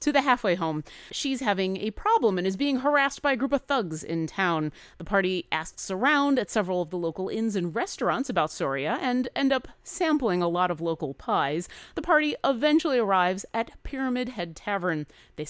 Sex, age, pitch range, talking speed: female, 30-49, 185-275 Hz, 200 wpm